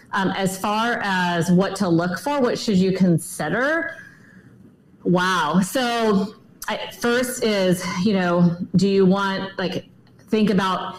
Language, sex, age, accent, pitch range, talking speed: English, female, 40-59, American, 175-205 Hz, 135 wpm